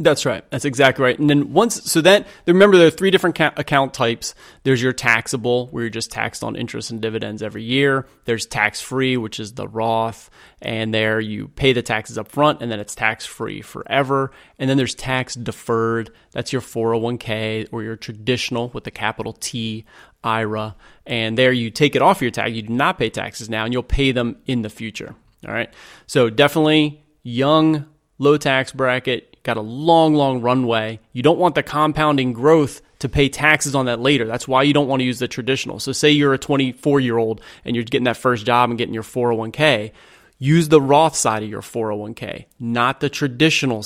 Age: 30-49